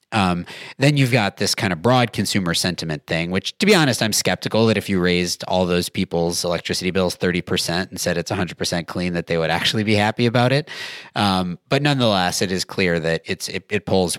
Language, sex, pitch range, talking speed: English, male, 90-115 Hz, 225 wpm